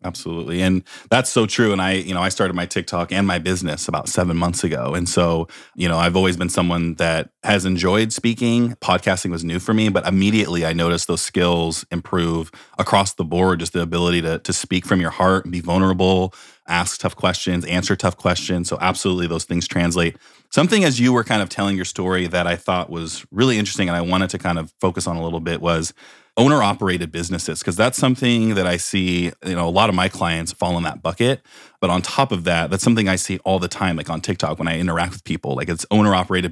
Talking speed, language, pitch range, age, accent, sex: 230 wpm, English, 85-100 Hz, 30-49, American, male